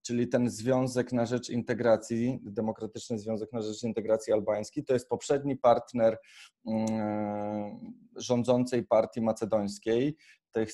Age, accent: 20-39, native